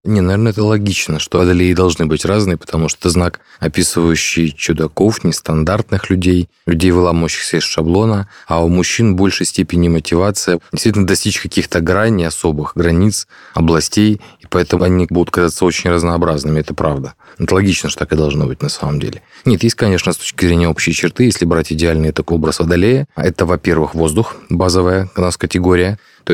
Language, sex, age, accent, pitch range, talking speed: Russian, male, 30-49, native, 80-95 Hz, 175 wpm